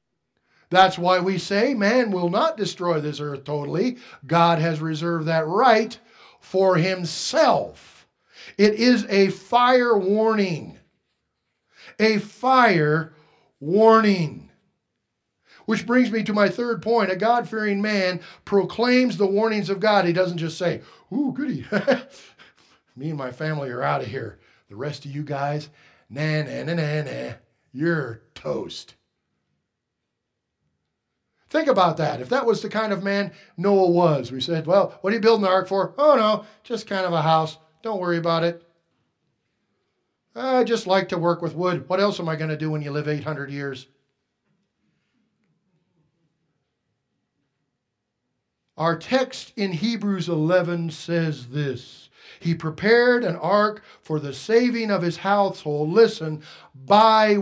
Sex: male